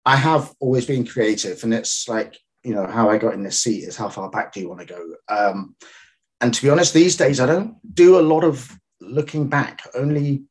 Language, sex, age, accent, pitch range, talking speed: English, male, 30-49, British, 95-130 Hz, 235 wpm